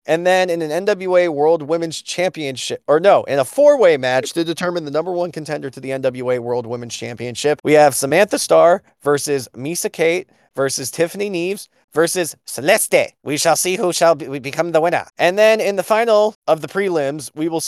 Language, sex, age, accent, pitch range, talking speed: English, male, 20-39, American, 140-195 Hz, 190 wpm